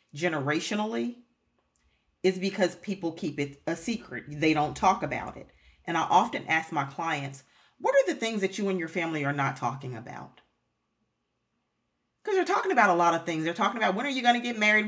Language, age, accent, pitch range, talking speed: English, 40-59, American, 150-210 Hz, 200 wpm